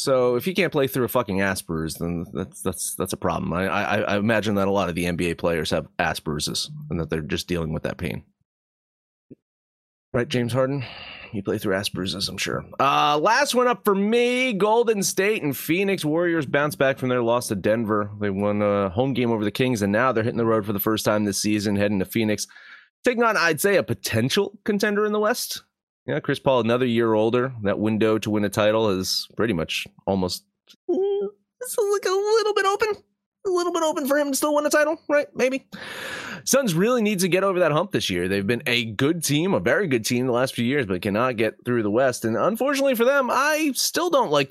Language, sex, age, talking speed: English, male, 30-49, 225 wpm